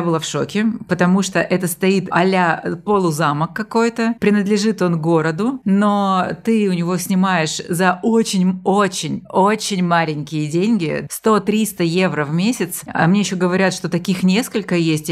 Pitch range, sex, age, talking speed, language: 170-205 Hz, female, 30-49, 135 wpm, Russian